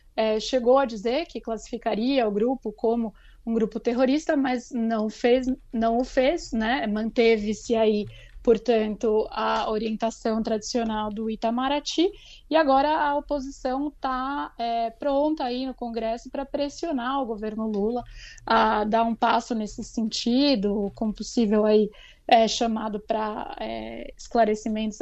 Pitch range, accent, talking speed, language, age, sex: 220-260 Hz, Brazilian, 125 wpm, Portuguese, 20-39, female